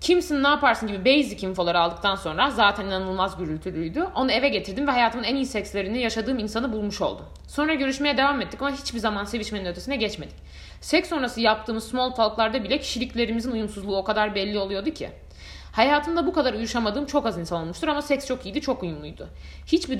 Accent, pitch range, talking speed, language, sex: native, 200-280 Hz, 185 wpm, Turkish, female